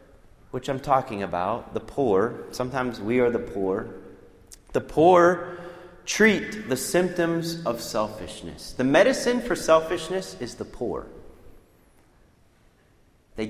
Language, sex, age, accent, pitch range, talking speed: English, male, 30-49, American, 105-150 Hz, 115 wpm